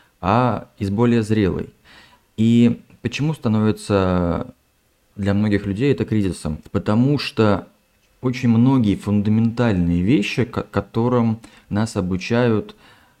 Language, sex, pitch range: Russian, male, 95-120 Hz